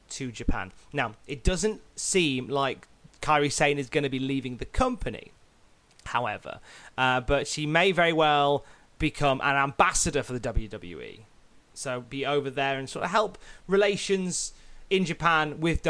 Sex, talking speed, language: male, 155 wpm, English